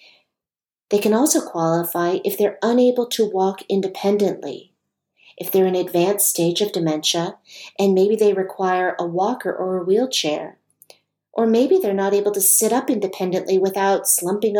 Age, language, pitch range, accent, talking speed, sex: 40-59, English, 175-215 Hz, American, 150 wpm, female